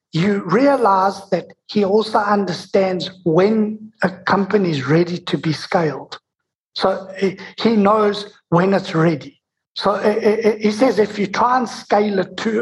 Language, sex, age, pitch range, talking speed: Danish, male, 60-79, 175-215 Hz, 145 wpm